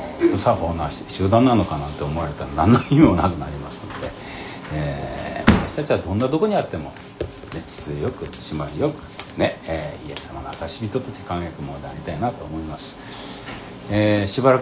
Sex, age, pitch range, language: male, 60-79, 80-105 Hz, Japanese